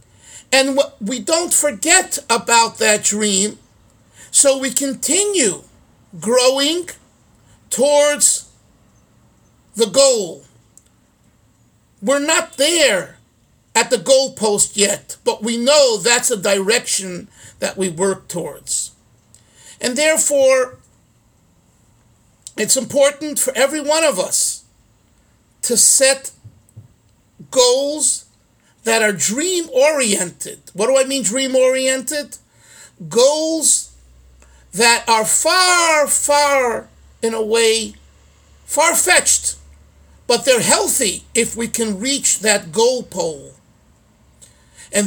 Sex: male